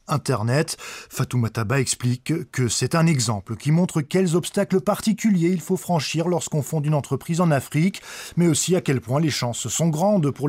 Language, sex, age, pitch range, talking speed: French, male, 20-39, 130-170 Hz, 185 wpm